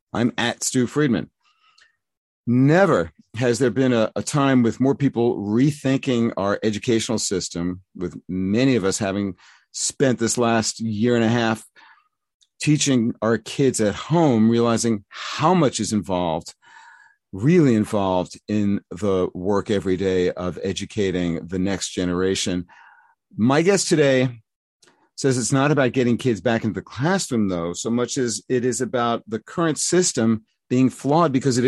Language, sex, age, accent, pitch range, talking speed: English, male, 50-69, American, 105-135 Hz, 150 wpm